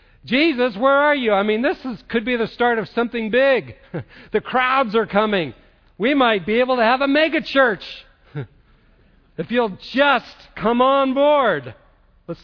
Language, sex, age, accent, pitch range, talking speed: English, male, 50-69, American, 145-200 Hz, 165 wpm